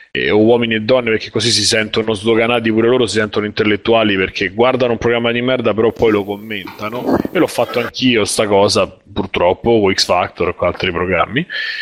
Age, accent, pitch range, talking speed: 30-49, native, 110-140 Hz, 195 wpm